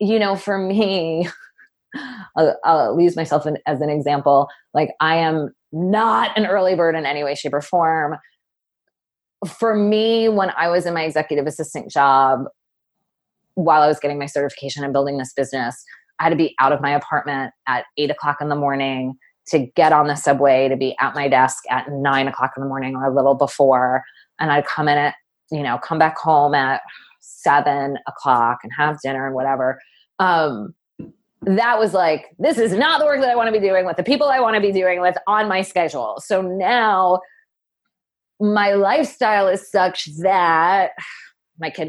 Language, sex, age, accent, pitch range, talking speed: English, female, 20-39, American, 145-195 Hz, 190 wpm